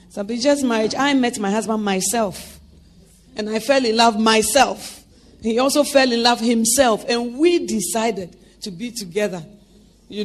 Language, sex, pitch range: English, female, 200-275 Hz